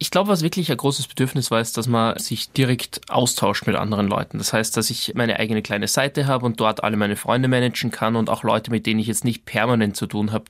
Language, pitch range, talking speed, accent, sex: German, 135-195 Hz, 255 wpm, German, male